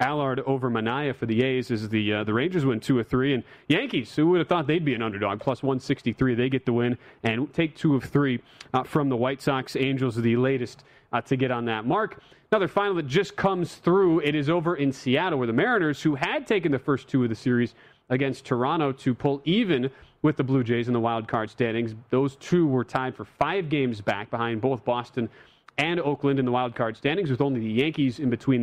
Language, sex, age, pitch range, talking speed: English, male, 30-49, 120-150 Hz, 235 wpm